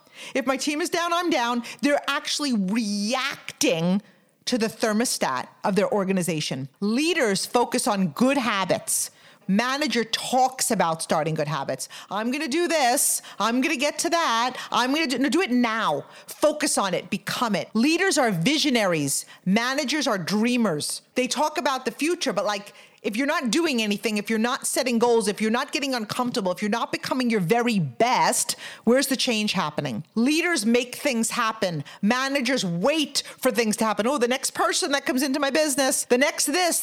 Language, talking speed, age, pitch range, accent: English, 180 wpm, 40-59, 215-290 Hz, American